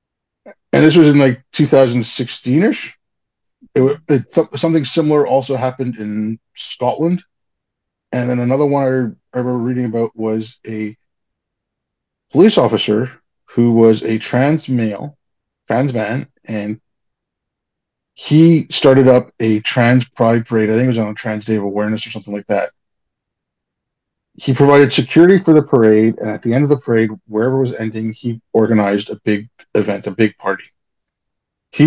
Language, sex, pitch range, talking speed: English, male, 110-140 Hz, 145 wpm